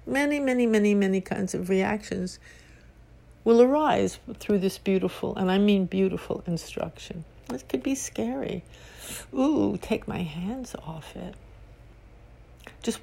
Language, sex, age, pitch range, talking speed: English, female, 60-79, 180-230 Hz, 130 wpm